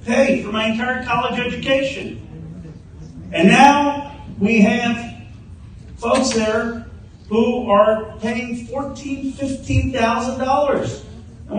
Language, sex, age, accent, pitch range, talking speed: English, male, 40-59, American, 145-230 Hz, 95 wpm